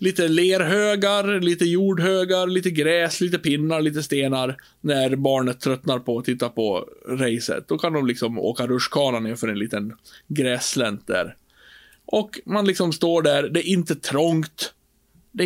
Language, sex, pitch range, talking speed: Swedish, male, 125-175 Hz, 150 wpm